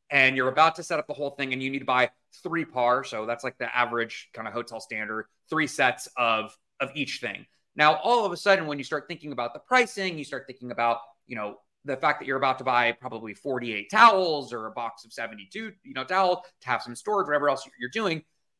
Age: 30-49